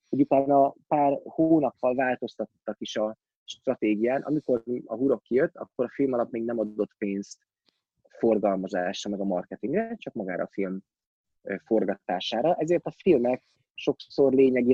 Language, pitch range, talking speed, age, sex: Hungarian, 110-155 Hz, 140 wpm, 20-39, male